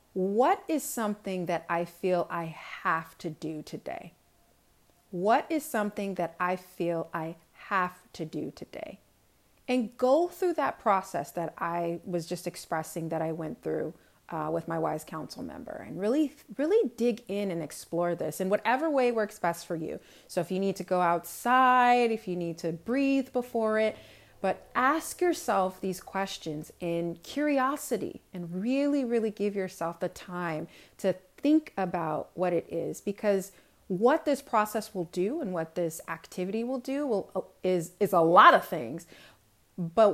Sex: female